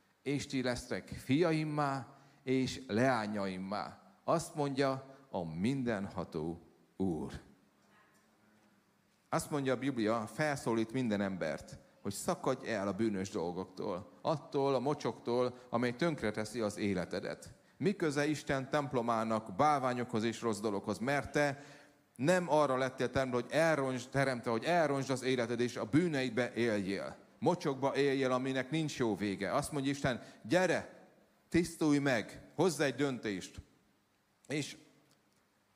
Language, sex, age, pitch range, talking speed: Hungarian, male, 30-49, 115-145 Hz, 115 wpm